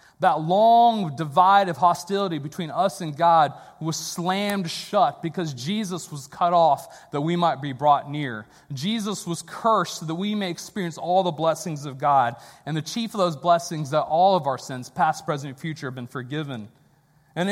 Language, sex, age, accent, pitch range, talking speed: English, male, 30-49, American, 145-190 Hz, 190 wpm